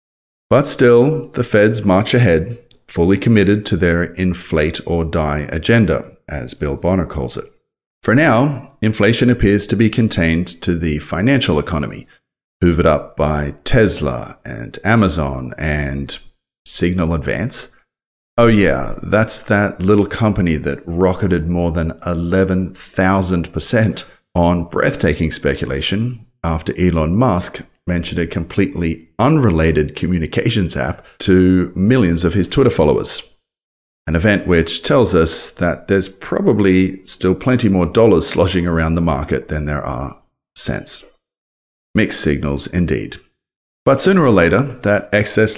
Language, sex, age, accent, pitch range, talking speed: English, male, 40-59, Australian, 80-105 Hz, 125 wpm